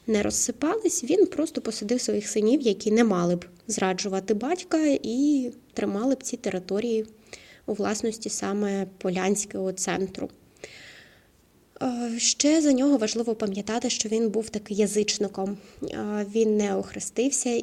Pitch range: 195-240 Hz